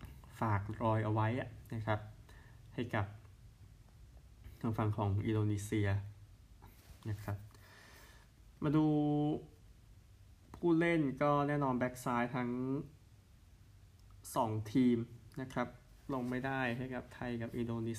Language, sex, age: Thai, male, 20-39